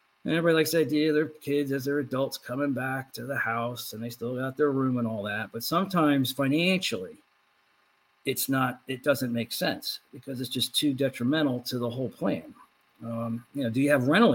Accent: American